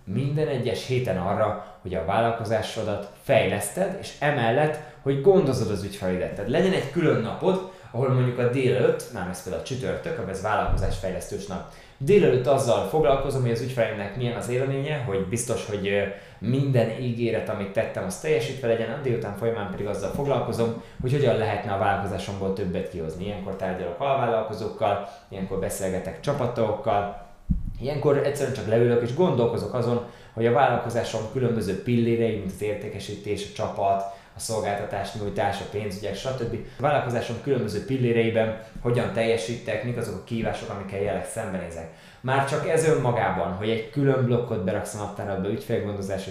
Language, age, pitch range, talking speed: Hungarian, 20-39, 100-125 Hz, 145 wpm